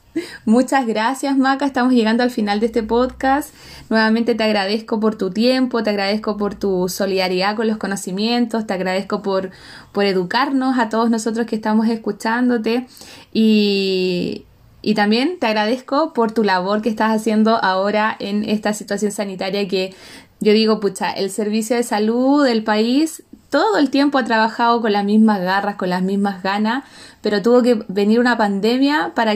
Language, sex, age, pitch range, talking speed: Spanish, female, 20-39, 210-245 Hz, 165 wpm